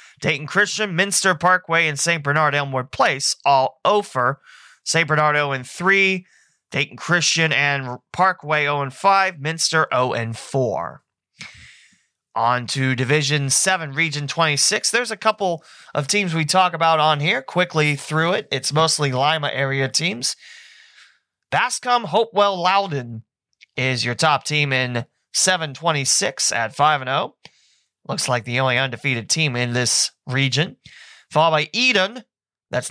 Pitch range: 130-185 Hz